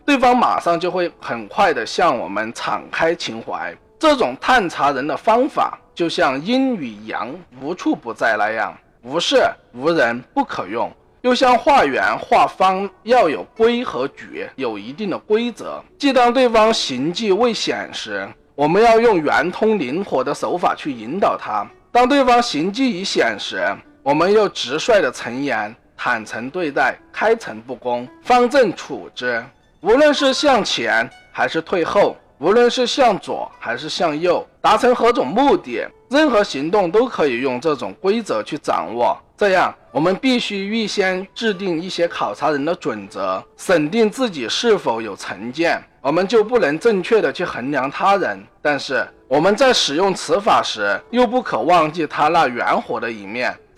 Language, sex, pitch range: Chinese, male, 195-260 Hz